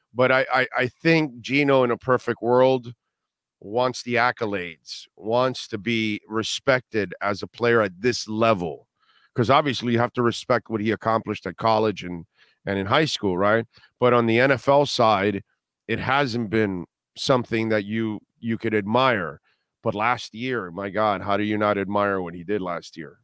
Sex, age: male, 40-59